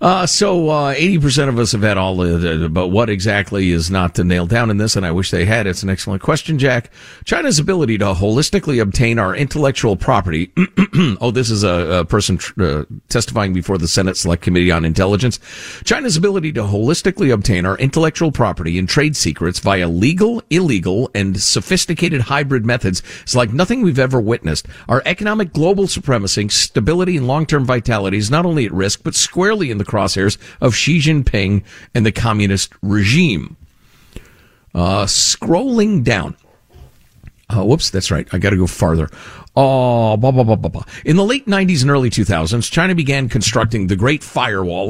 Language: English